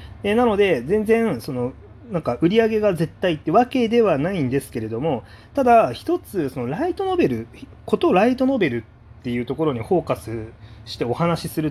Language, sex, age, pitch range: Japanese, male, 30-49, 115-185 Hz